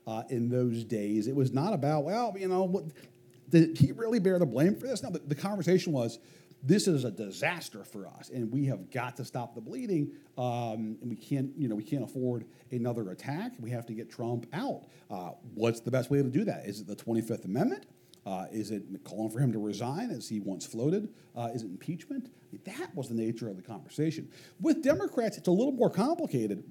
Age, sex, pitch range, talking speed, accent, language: 50-69, male, 115-155 Hz, 220 wpm, American, English